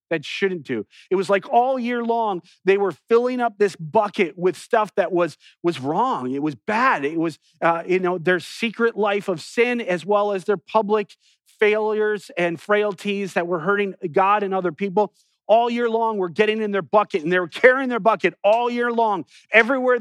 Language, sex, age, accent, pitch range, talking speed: English, male, 40-59, American, 155-215 Hz, 200 wpm